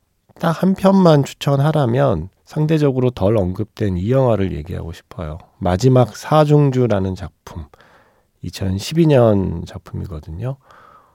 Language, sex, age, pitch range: Korean, male, 40-59, 90-130 Hz